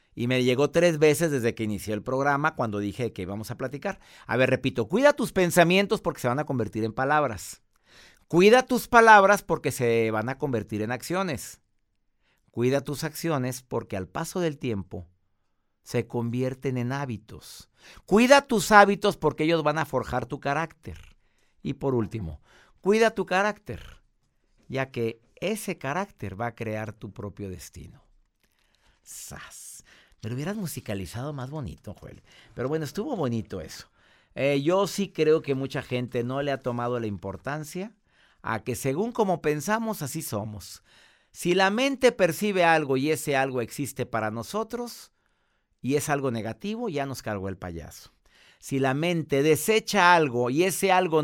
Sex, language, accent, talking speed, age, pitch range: male, Spanish, Mexican, 160 wpm, 50-69, 115-185 Hz